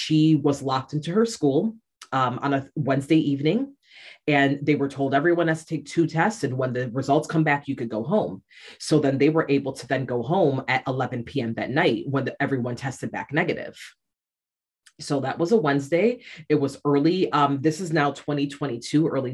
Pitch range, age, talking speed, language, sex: 130-155 Hz, 30-49, 200 wpm, English, female